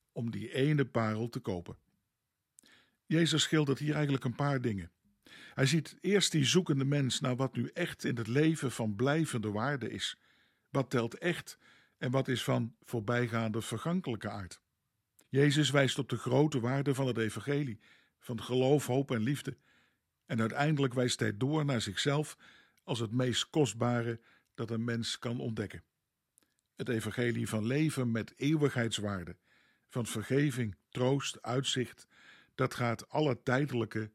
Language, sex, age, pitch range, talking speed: Dutch, male, 50-69, 115-145 Hz, 150 wpm